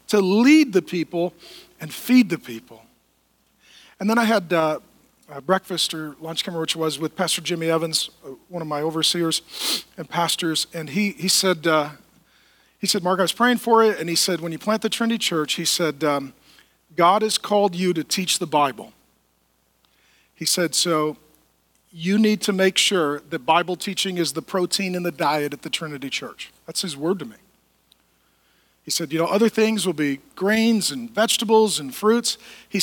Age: 40-59